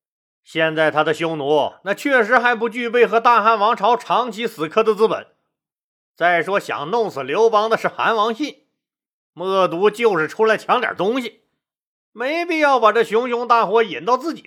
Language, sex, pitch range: Chinese, male, 170-240 Hz